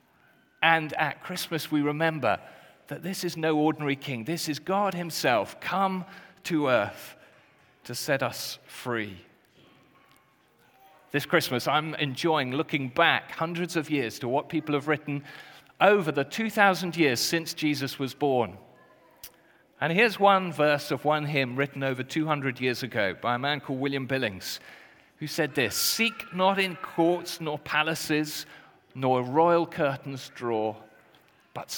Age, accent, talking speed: 40-59, British, 145 wpm